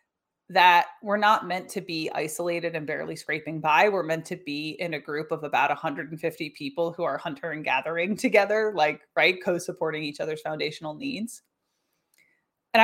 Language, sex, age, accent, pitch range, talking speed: English, female, 20-39, American, 165-230 Hz, 170 wpm